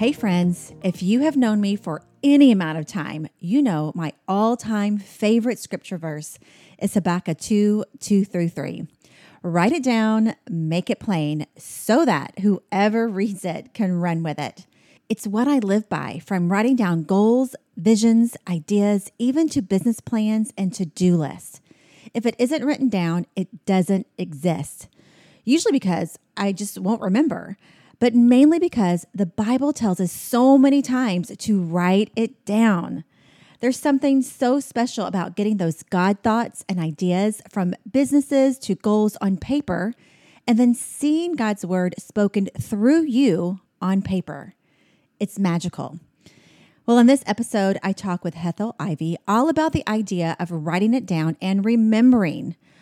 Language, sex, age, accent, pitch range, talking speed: English, female, 30-49, American, 180-235 Hz, 150 wpm